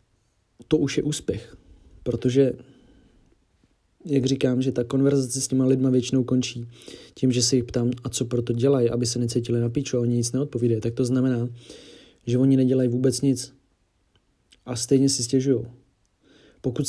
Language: Czech